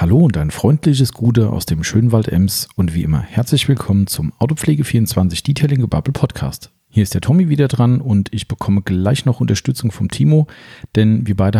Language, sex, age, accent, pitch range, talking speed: German, male, 40-59, German, 105-130 Hz, 185 wpm